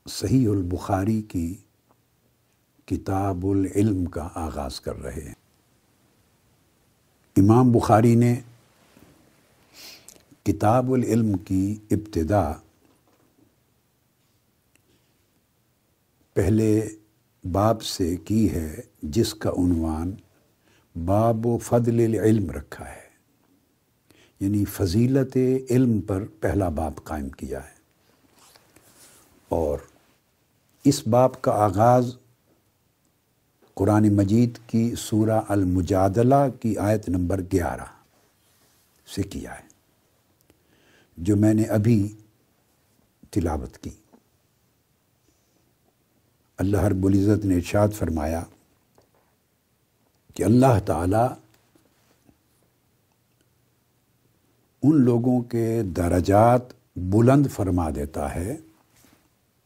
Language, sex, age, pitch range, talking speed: Urdu, male, 70-89, 95-115 Hz, 80 wpm